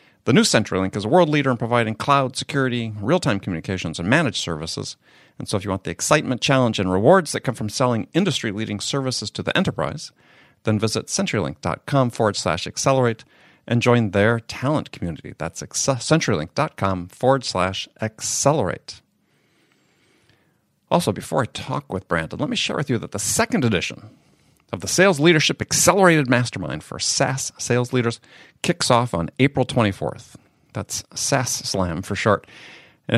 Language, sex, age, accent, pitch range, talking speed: English, male, 50-69, American, 100-135 Hz, 155 wpm